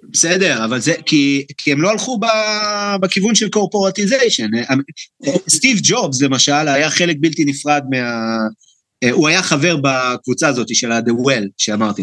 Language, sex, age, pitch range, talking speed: Hebrew, male, 30-49, 135-190 Hz, 145 wpm